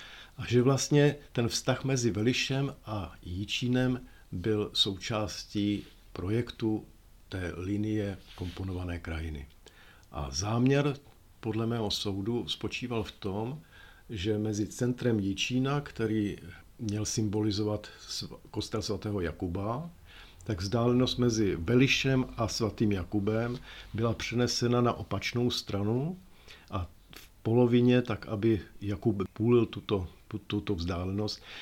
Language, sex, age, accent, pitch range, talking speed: Czech, male, 50-69, native, 95-120 Hz, 110 wpm